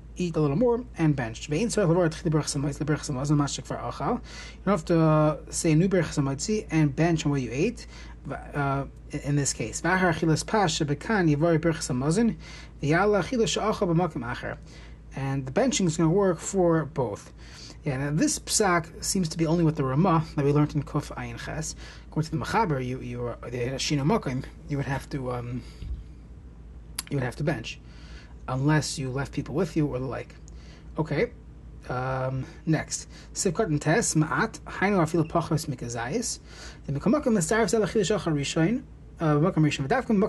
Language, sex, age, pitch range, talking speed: English, male, 30-49, 140-175 Hz, 120 wpm